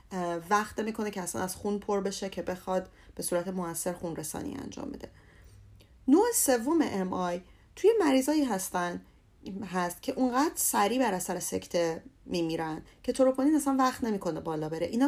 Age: 30-49